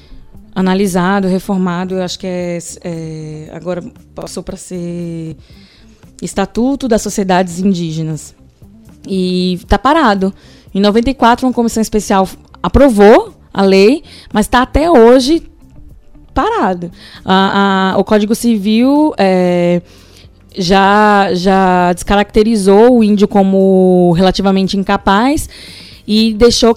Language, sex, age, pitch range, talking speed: Portuguese, female, 20-39, 180-230 Hz, 105 wpm